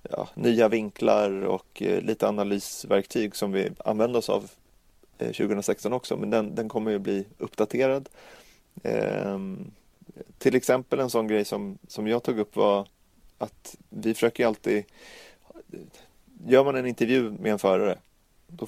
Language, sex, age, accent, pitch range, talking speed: Swedish, male, 30-49, native, 100-115 Hz, 145 wpm